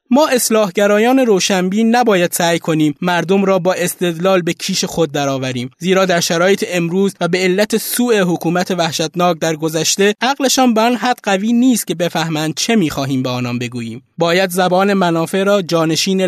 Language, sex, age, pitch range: Persian, male, 20-39, 165-215 Hz